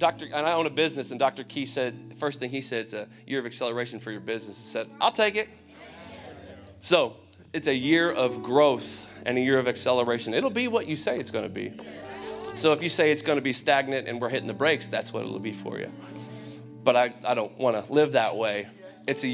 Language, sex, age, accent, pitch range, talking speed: English, male, 30-49, American, 110-145 Hz, 235 wpm